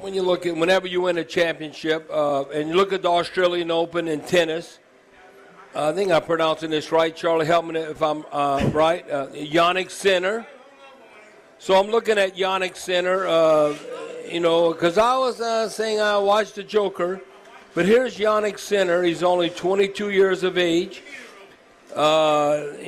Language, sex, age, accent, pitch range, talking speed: English, male, 60-79, American, 165-195 Hz, 165 wpm